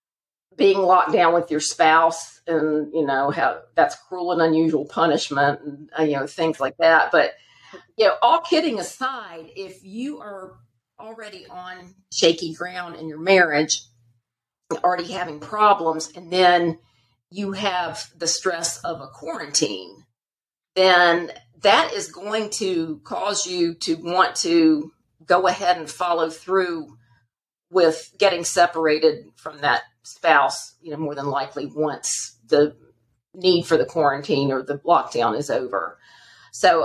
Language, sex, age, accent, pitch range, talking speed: English, female, 50-69, American, 150-185 Hz, 140 wpm